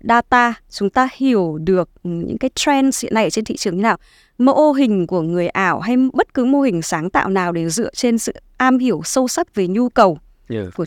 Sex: female